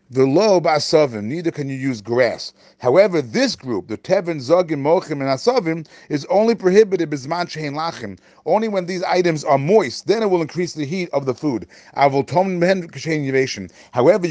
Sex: male